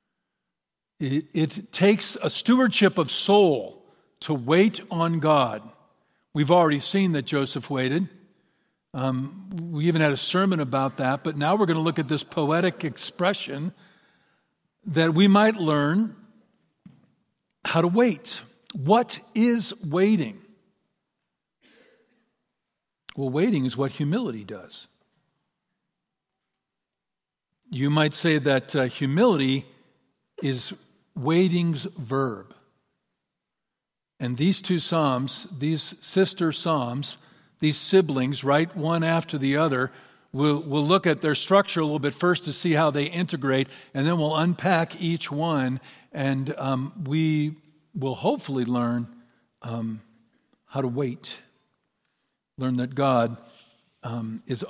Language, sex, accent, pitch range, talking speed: English, male, American, 135-180 Hz, 120 wpm